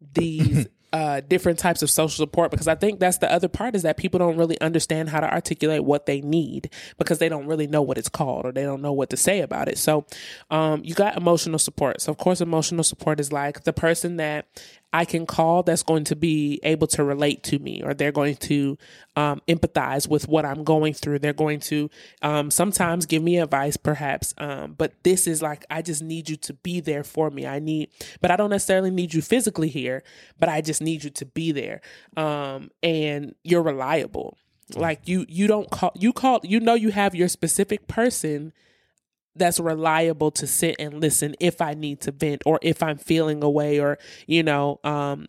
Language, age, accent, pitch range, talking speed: English, 20-39, American, 150-170 Hz, 215 wpm